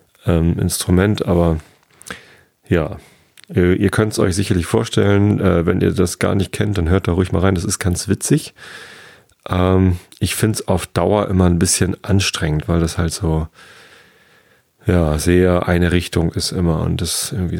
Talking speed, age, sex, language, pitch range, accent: 175 wpm, 30-49, male, German, 90-105 Hz, German